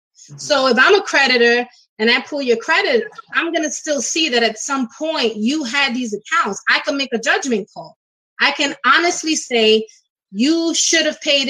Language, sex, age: English, female, 30-49